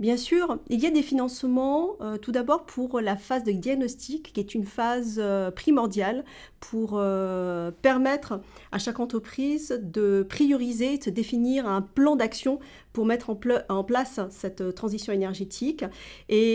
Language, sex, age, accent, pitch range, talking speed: French, female, 40-59, French, 205-255 Hz, 160 wpm